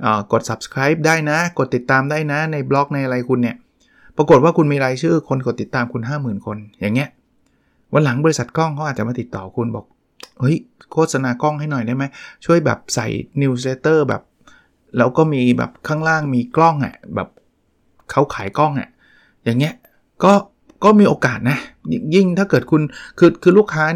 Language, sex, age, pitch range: Thai, male, 20-39, 120-155 Hz